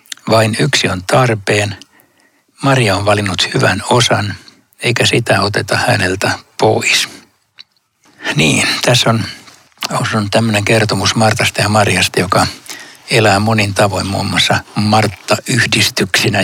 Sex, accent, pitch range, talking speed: male, native, 95-120 Hz, 110 wpm